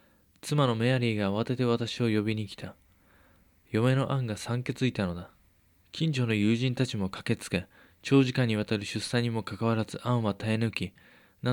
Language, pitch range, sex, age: Japanese, 95-120 Hz, male, 20-39